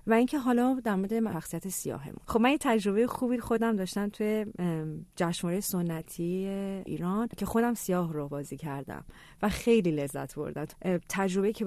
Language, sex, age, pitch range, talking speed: Persian, female, 40-59, 155-195 Hz, 155 wpm